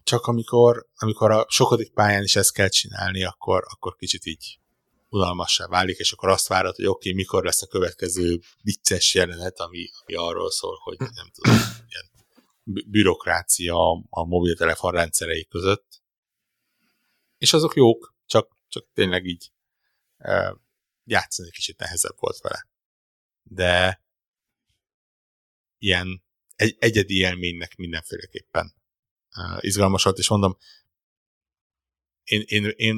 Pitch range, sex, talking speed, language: 90-105 Hz, male, 120 wpm, Hungarian